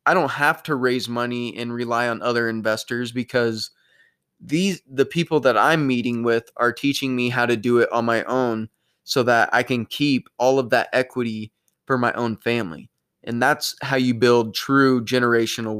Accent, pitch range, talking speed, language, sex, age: American, 120-135 Hz, 185 wpm, English, male, 20-39